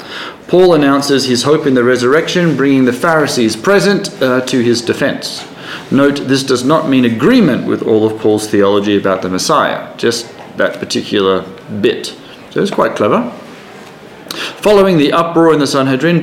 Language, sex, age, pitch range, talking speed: English, male, 30-49, 120-160 Hz, 160 wpm